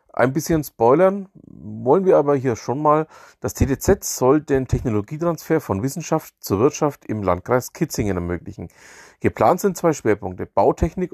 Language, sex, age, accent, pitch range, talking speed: German, male, 40-59, German, 105-155 Hz, 145 wpm